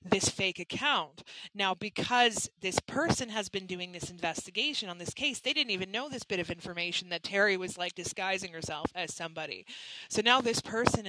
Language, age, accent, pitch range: English, 30-49, American, 170-215 Hz